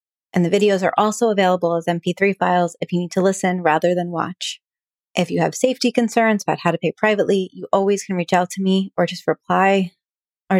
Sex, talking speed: female, 215 wpm